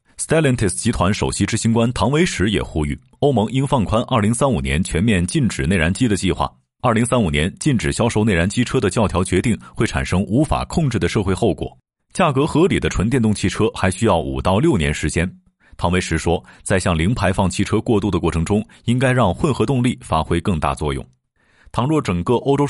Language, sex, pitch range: Chinese, male, 85-120 Hz